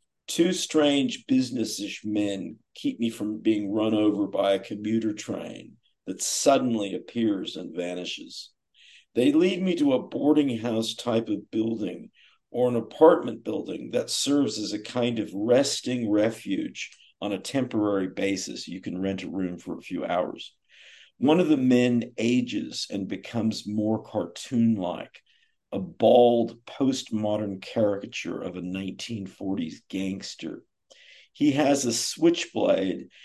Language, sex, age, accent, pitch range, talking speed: English, male, 50-69, American, 105-145 Hz, 135 wpm